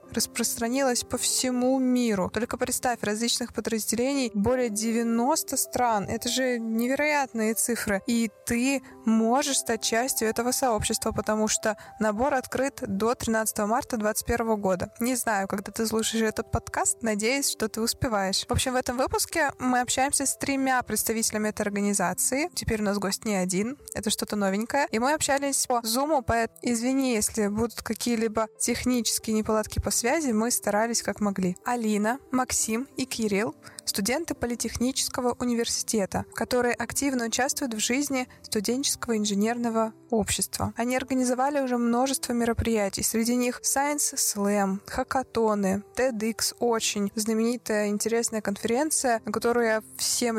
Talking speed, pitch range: 135 wpm, 215-255 Hz